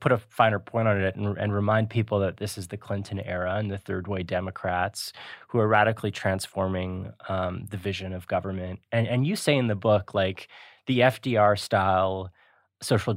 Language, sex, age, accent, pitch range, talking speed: English, male, 20-39, American, 95-115 Hz, 185 wpm